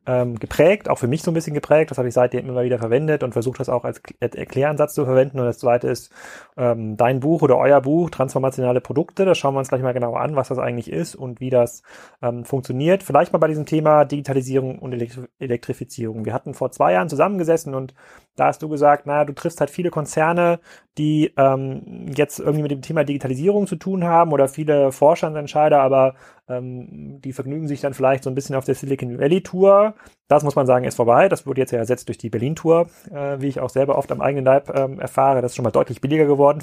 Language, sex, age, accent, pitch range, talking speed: German, male, 30-49, German, 130-150 Hz, 220 wpm